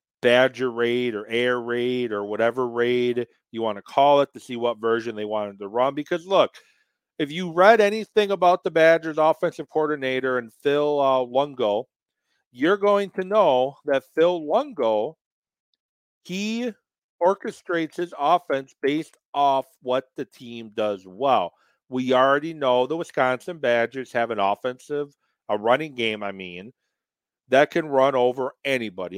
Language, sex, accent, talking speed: English, male, American, 150 wpm